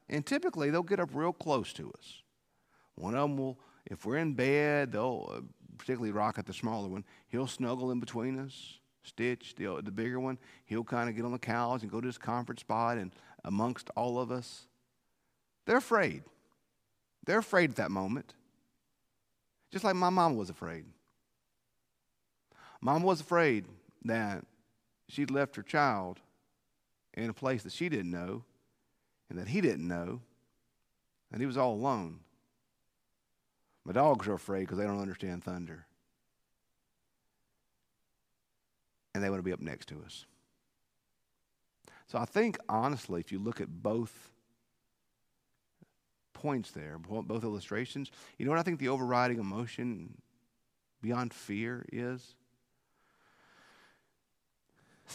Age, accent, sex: 50-69, American, male